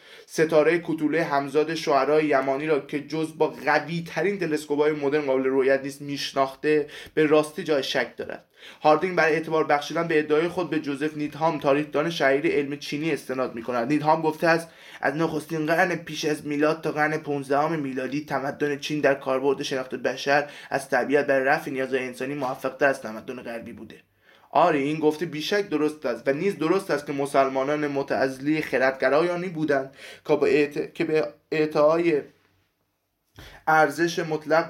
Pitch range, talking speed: 135-155 Hz, 155 wpm